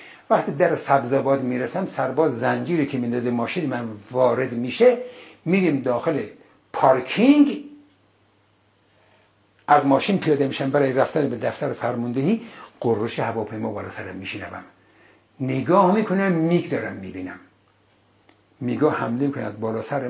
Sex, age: male, 60-79